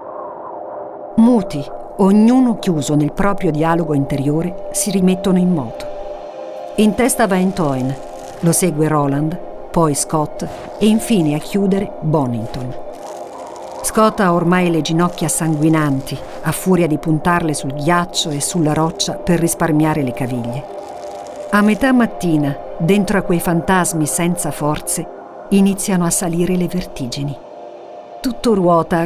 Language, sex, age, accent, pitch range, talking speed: Italian, female, 50-69, native, 155-200 Hz, 125 wpm